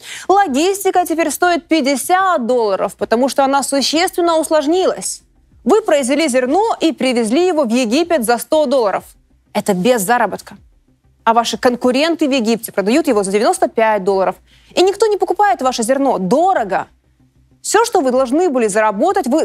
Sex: female